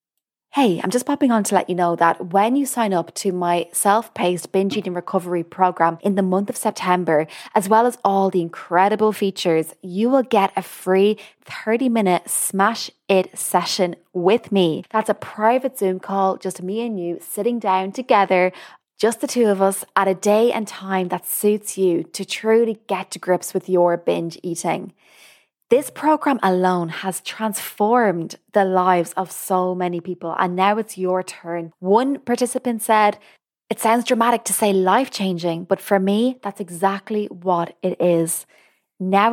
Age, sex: 20-39, female